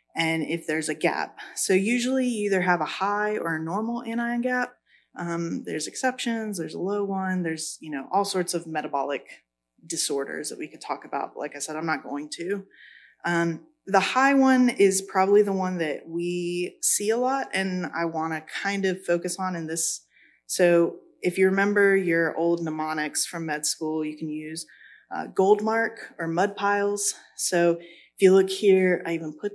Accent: American